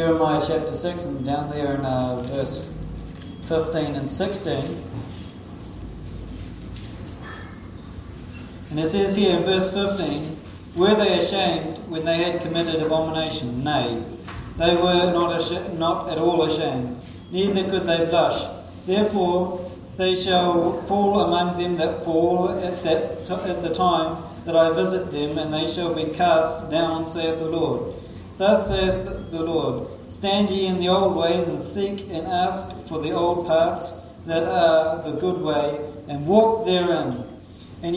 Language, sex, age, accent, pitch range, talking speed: English, male, 40-59, Australian, 145-180 Hz, 145 wpm